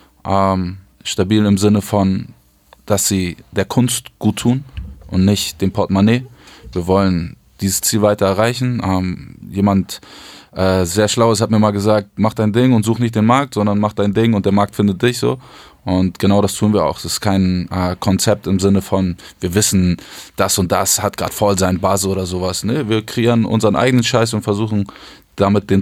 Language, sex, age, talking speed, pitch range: German, male, 20-39, 195 wpm, 95-110 Hz